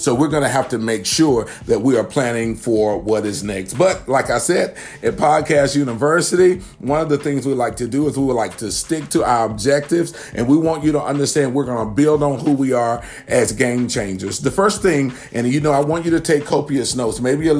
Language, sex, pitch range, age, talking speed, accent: English, male, 125-150 Hz, 40-59, 245 wpm, American